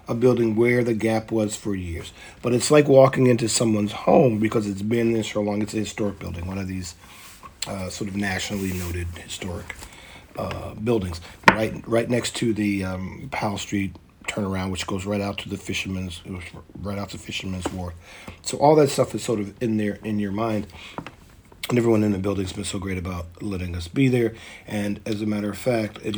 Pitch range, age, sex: 95-115 Hz, 40-59, male